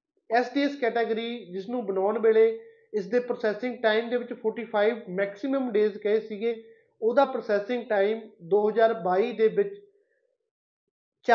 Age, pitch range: 30-49, 210-250 Hz